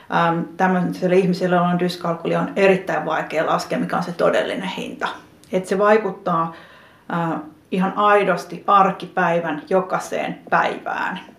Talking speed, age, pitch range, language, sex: 115 wpm, 30-49, 170-195 Hz, Finnish, female